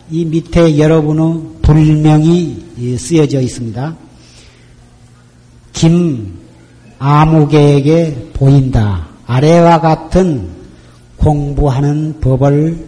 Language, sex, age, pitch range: Korean, male, 40-59, 115-180 Hz